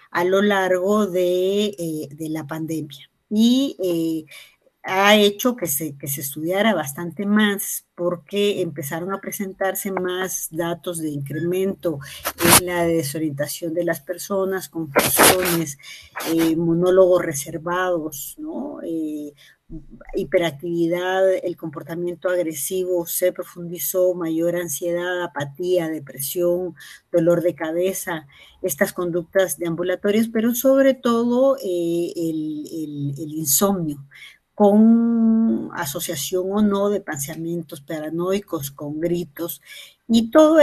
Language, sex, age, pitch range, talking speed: Spanish, female, 40-59, 165-195 Hz, 110 wpm